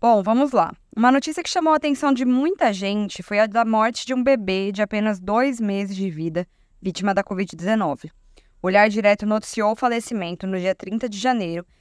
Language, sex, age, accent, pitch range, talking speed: Portuguese, female, 20-39, Brazilian, 195-245 Hz, 200 wpm